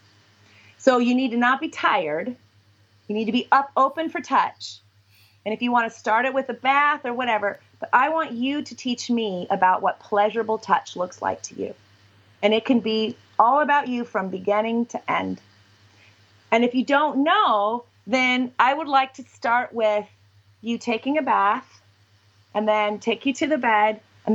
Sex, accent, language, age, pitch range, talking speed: female, American, English, 30-49, 195-250 Hz, 190 wpm